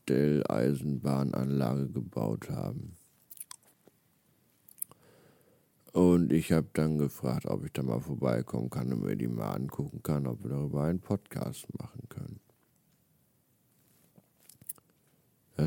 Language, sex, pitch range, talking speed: German, male, 70-85 Hz, 105 wpm